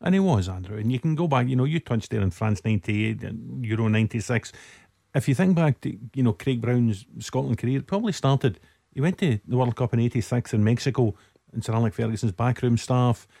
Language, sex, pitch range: English, male, 115-135 Hz